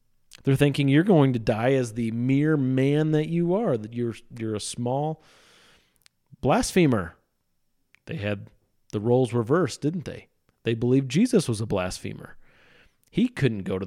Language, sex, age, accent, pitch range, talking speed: English, male, 40-59, American, 105-150 Hz, 155 wpm